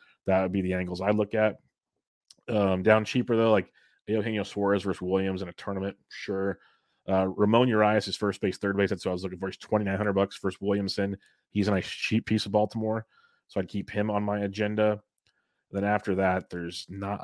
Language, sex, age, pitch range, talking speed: English, male, 30-49, 95-110 Hz, 205 wpm